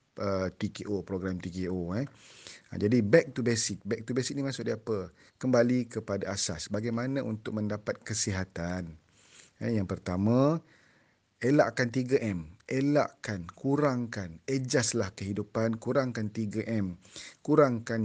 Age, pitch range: 40-59, 105-130 Hz